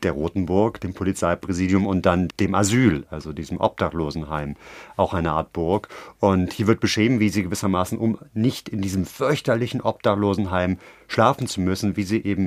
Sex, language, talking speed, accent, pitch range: male, German, 165 wpm, German, 95-115 Hz